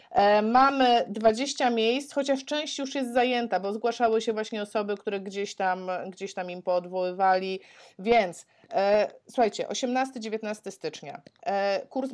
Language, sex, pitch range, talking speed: Polish, female, 180-225 Hz, 120 wpm